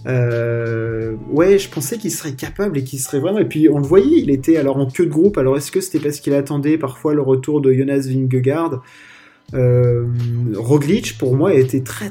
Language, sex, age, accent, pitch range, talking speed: French, male, 20-39, French, 125-155 Hz, 210 wpm